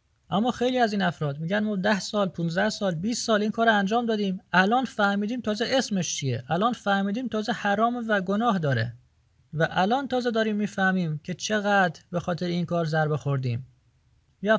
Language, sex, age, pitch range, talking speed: Persian, male, 30-49, 155-220 Hz, 175 wpm